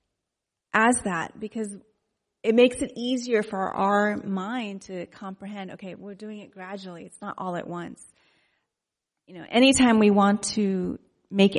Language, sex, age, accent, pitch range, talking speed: English, female, 30-49, American, 185-220 Hz, 150 wpm